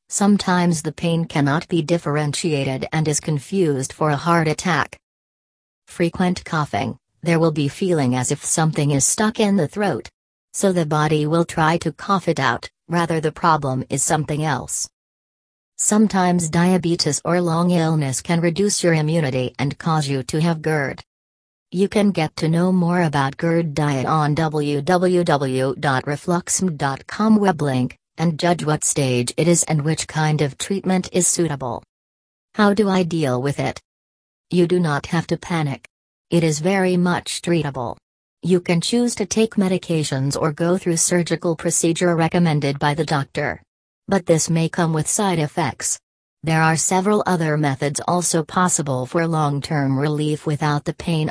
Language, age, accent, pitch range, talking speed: English, 40-59, American, 145-175 Hz, 160 wpm